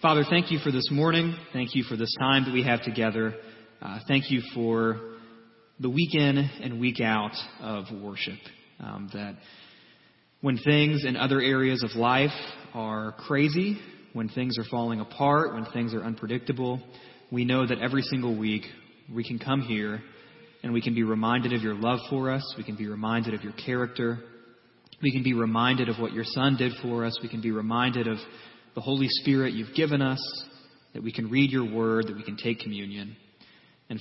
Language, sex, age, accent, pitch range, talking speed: English, male, 30-49, American, 110-130 Hz, 190 wpm